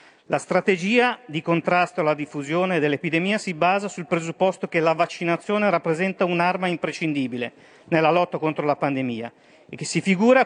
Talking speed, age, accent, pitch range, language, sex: 150 wpm, 40-59, native, 145-190 Hz, Italian, male